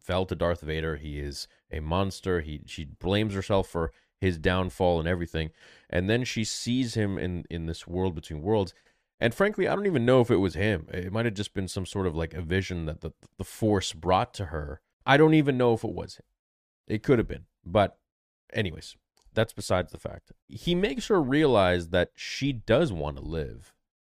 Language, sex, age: English, male, 30-49